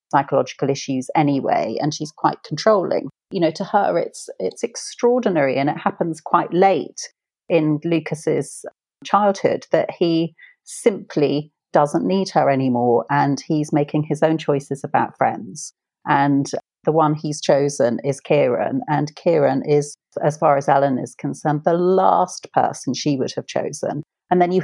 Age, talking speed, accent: 40-59, 155 wpm, British